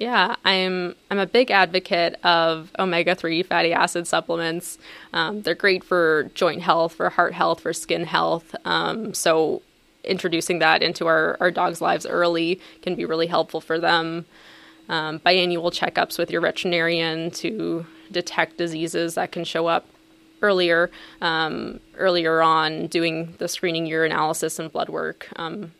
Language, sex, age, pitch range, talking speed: English, female, 20-39, 165-180 Hz, 150 wpm